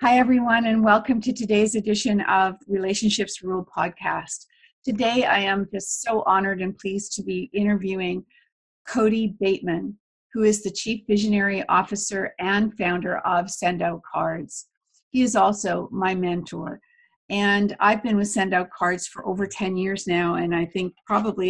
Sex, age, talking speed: female, 50-69, 160 wpm